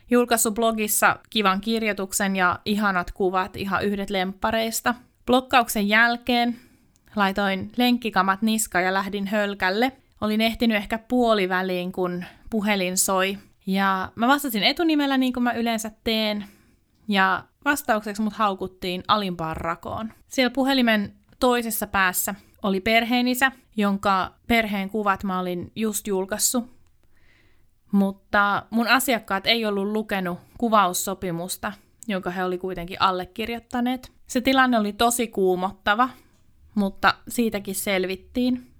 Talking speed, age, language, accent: 115 wpm, 20-39, Finnish, native